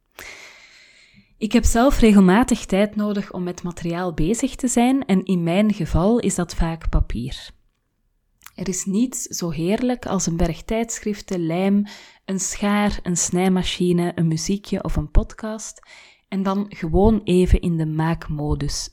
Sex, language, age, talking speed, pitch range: female, Dutch, 20-39, 145 wpm, 175-210 Hz